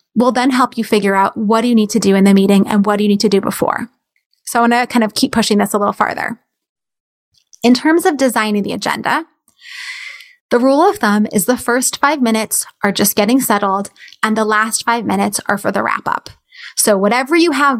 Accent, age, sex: American, 20-39, female